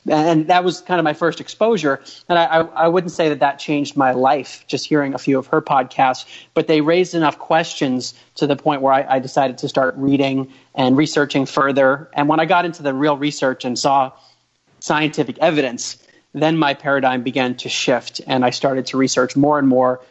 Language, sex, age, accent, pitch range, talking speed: English, male, 30-49, American, 130-155 Hz, 210 wpm